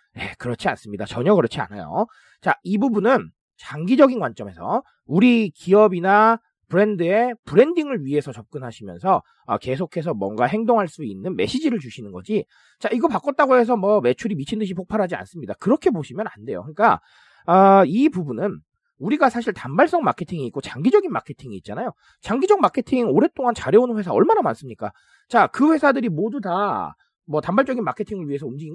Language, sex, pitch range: Korean, male, 155-250 Hz